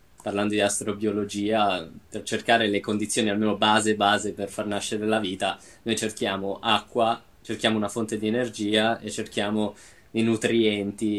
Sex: male